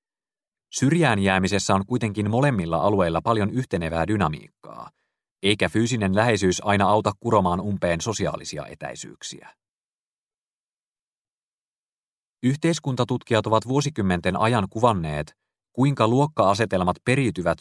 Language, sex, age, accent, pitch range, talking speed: Finnish, male, 30-49, native, 90-120 Hz, 85 wpm